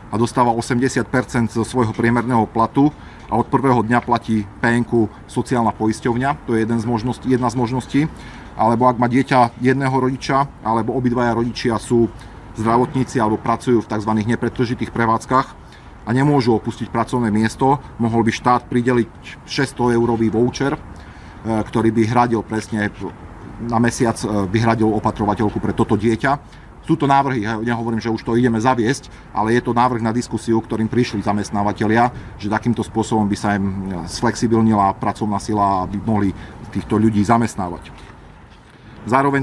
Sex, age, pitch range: male, 40-59, 110-125 Hz